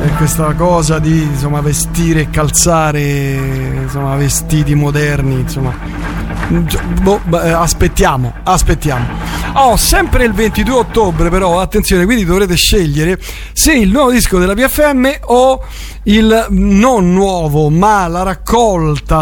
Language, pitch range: Italian, 160-210 Hz